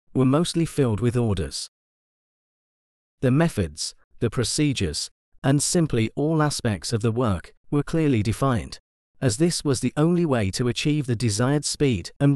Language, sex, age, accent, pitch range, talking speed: English, male, 40-59, British, 105-145 Hz, 150 wpm